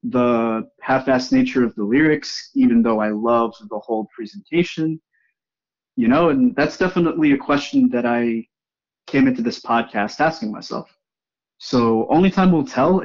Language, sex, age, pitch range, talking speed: English, male, 20-39, 115-160 Hz, 150 wpm